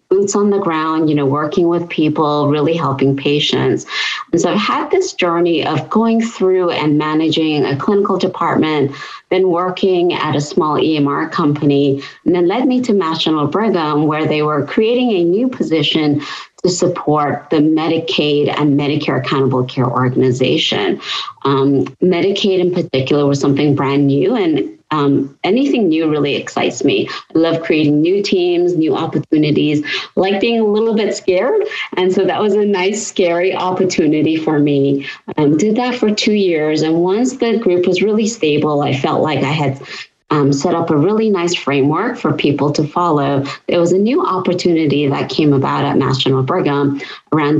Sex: female